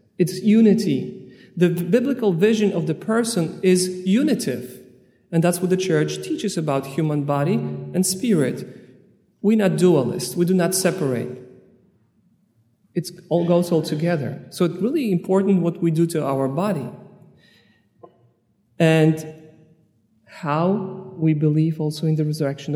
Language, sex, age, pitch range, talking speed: English, male, 40-59, 145-185 Hz, 135 wpm